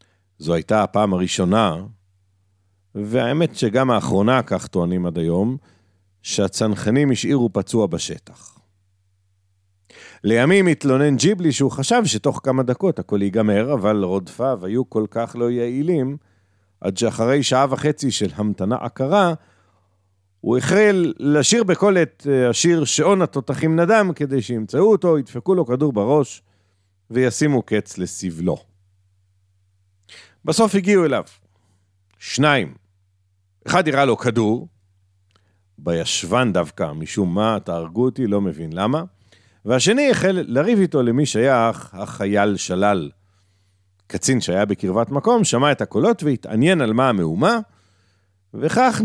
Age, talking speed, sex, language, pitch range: 50-69, 115 wpm, male, Hebrew, 95-140 Hz